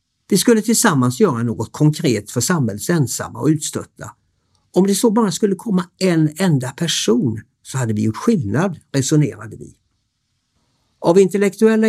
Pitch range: 115-175 Hz